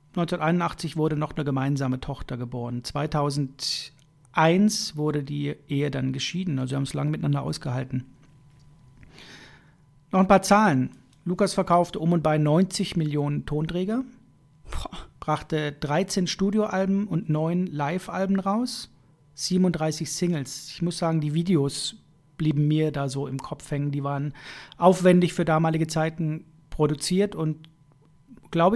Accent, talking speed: German, 130 wpm